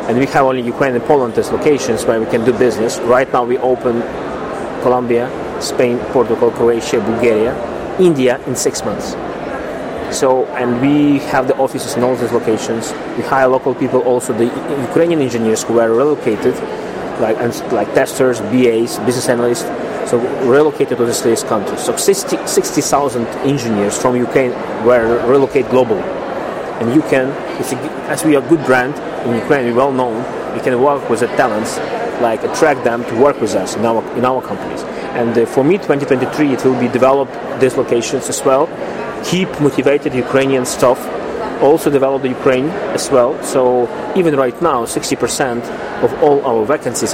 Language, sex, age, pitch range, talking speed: English, male, 30-49, 125-145 Hz, 165 wpm